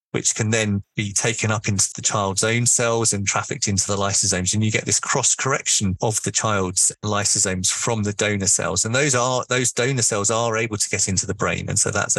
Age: 30-49